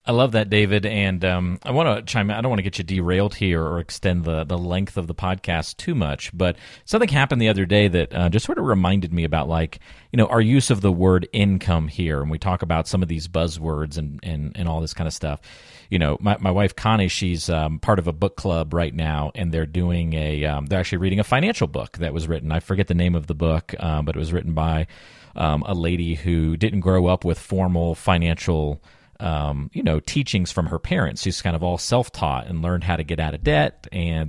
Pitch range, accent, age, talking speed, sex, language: 80-110 Hz, American, 40-59, 245 wpm, male, English